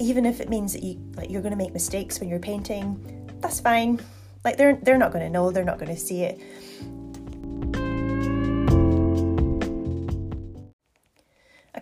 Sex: female